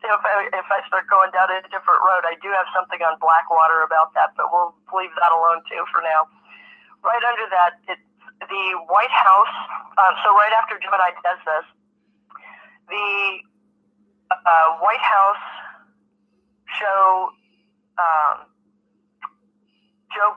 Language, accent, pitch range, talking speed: English, American, 175-210 Hz, 130 wpm